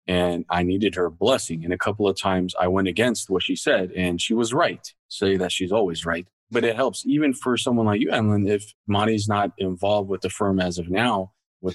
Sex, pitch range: male, 95-105 Hz